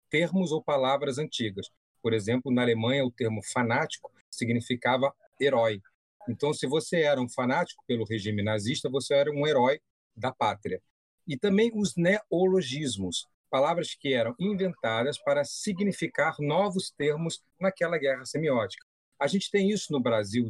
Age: 40-59